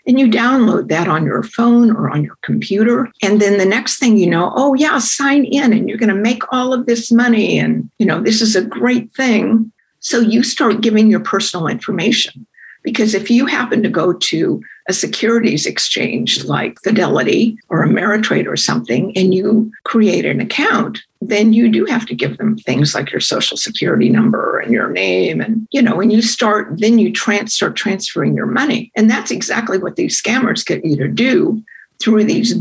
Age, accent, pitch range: 60-79, American, 205-235 Hz